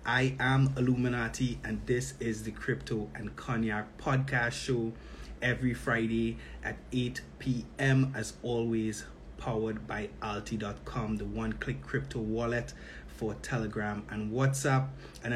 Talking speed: 120 wpm